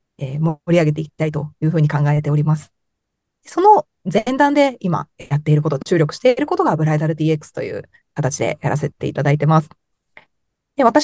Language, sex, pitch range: Japanese, female, 150-220 Hz